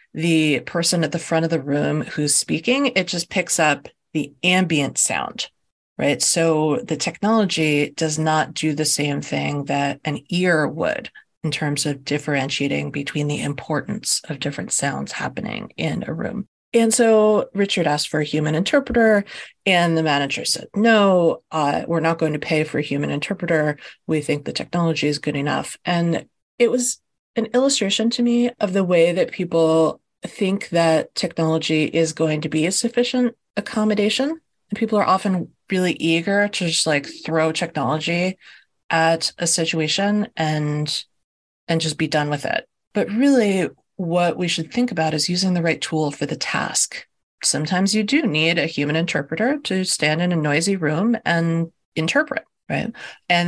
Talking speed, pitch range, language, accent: 170 wpm, 155-200 Hz, English, American